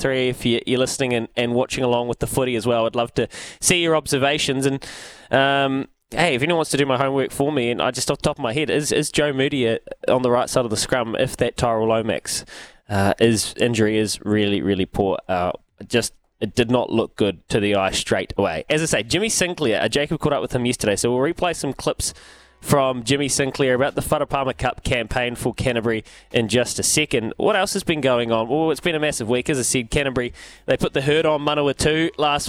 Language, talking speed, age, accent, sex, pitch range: English, 240 wpm, 20-39, Australian, male, 115-145 Hz